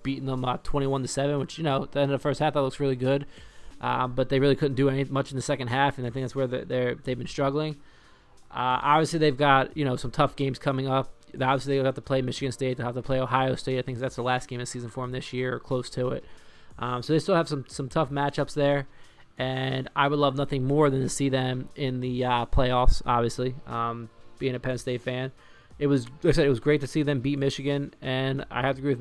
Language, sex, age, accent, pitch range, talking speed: English, male, 20-39, American, 125-140 Hz, 275 wpm